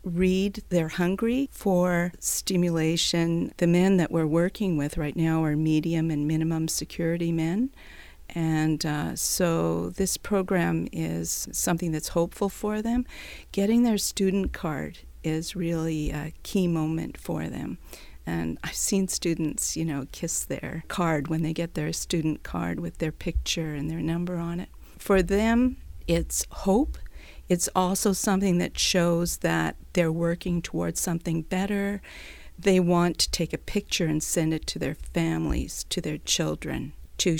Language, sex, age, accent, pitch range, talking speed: English, female, 50-69, American, 155-180 Hz, 150 wpm